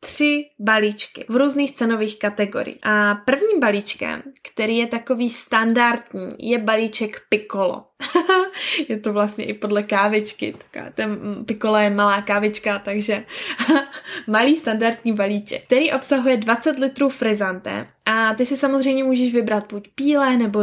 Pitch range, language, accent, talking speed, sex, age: 210-260 Hz, Czech, native, 130 wpm, female, 20-39